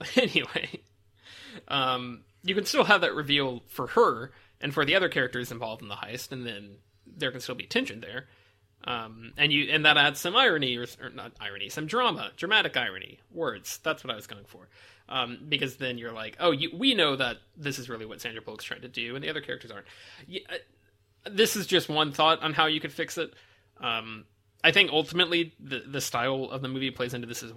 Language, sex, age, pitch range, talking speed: English, male, 20-39, 105-145 Hz, 215 wpm